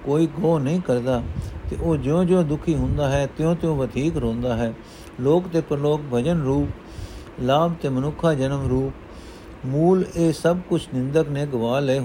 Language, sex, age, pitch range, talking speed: Punjabi, male, 60-79, 130-160 Hz, 165 wpm